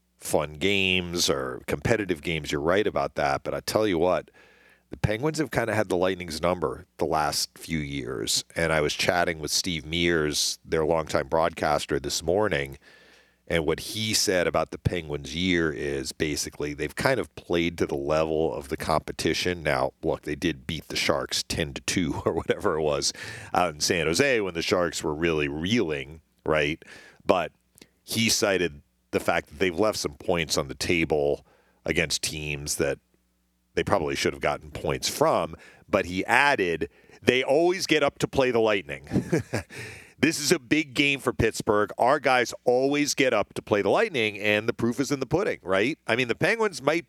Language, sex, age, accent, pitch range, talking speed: English, male, 40-59, American, 85-130 Hz, 185 wpm